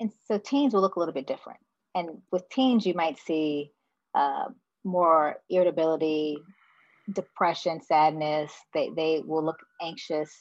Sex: female